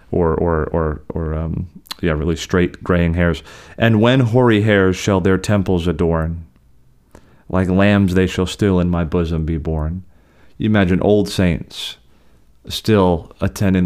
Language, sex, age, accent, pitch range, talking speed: English, male, 30-49, American, 80-95 Hz, 145 wpm